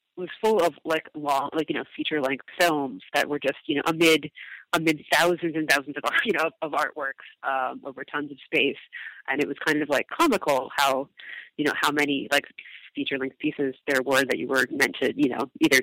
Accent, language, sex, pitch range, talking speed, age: American, English, female, 145-175 Hz, 215 wpm, 30-49